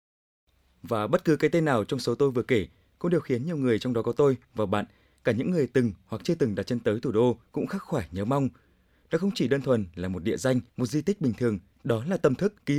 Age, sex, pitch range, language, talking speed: 20-39, male, 115-160 Hz, Vietnamese, 270 wpm